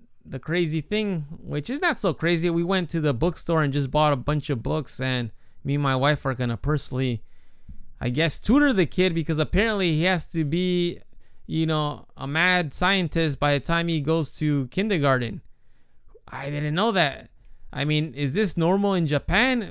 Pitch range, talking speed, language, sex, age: 145-190 Hz, 190 wpm, English, male, 20-39